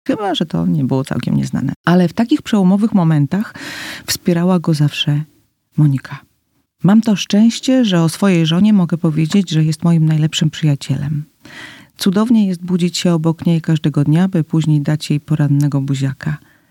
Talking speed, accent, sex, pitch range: 160 wpm, native, female, 145-180 Hz